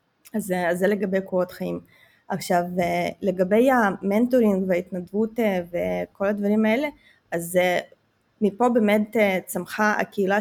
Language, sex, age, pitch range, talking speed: Hebrew, female, 20-39, 185-210 Hz, 105 wpm